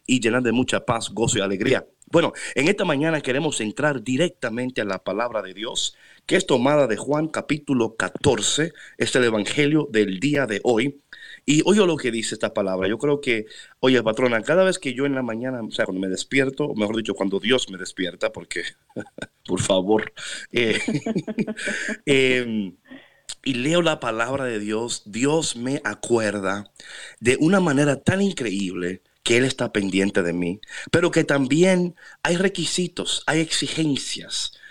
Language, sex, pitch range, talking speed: Spanish, male, 110-155 Hz, 170 wpm